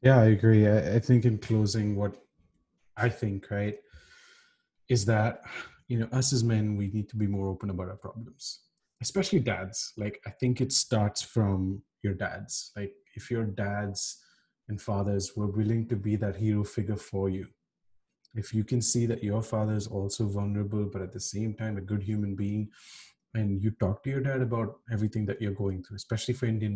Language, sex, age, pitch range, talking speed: English, male, 30-49, 100-115 Hz, 195 wpm